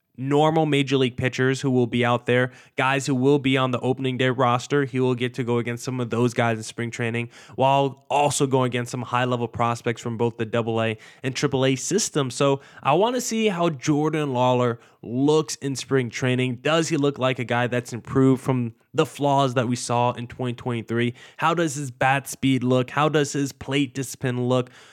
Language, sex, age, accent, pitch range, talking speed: English, male, 10-29, American, 120-140 Hz, 210 wpm